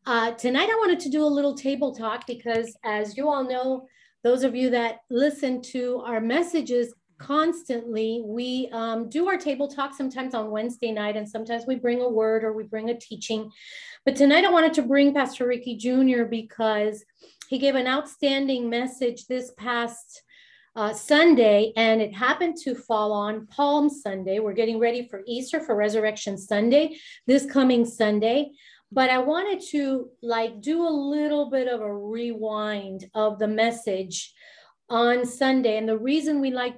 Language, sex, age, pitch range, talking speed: English, female, 30-49, 225-275 Hz, 170 wpm